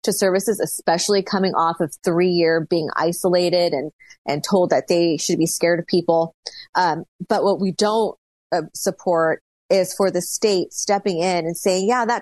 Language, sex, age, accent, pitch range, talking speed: English, female, 30-49, American, 170-200 Hz, 175 wpm